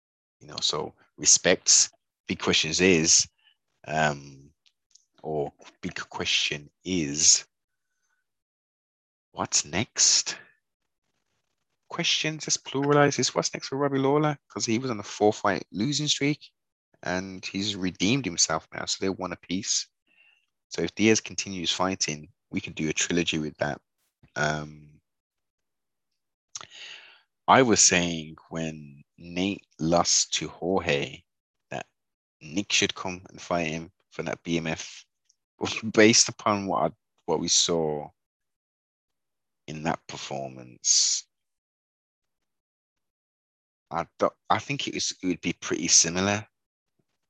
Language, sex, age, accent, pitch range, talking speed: English, male, 30-49, British, 75-105 Hz, 120 wpm